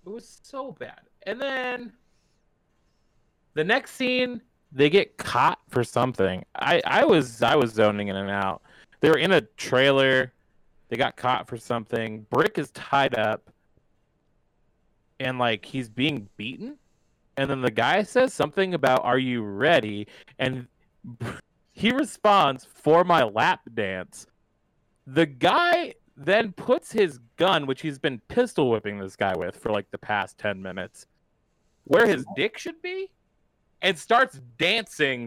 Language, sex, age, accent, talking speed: English, male, 30-49, American, 150 wpm